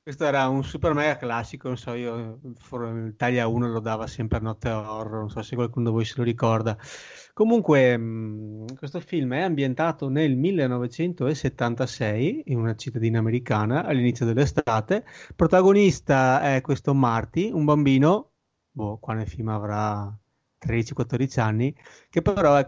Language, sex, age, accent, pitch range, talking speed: Italian, male, 30-49, native, 115-135 Hz, 150 wpm